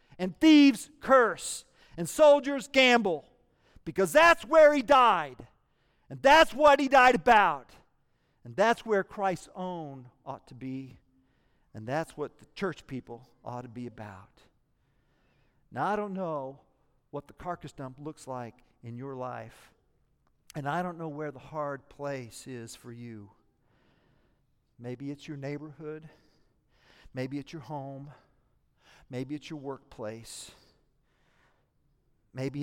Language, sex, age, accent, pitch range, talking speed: English, male, 50-69, American, 125-165 Hz, 130 wpm